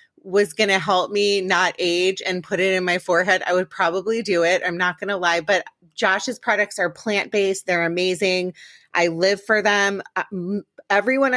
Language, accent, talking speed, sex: English, American, 185 wpm, female